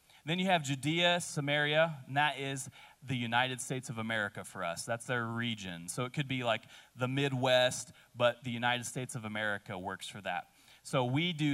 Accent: American